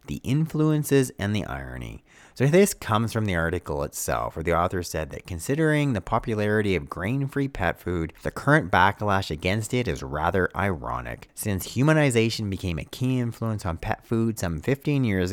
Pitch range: 85-120 Hz